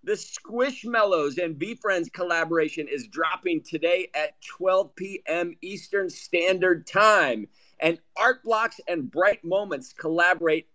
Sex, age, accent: male, 50-69, American